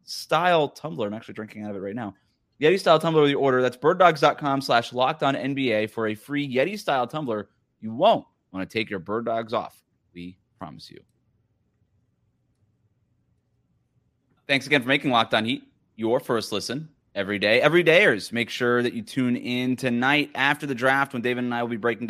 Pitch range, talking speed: 105-140 Hz, 195 wpm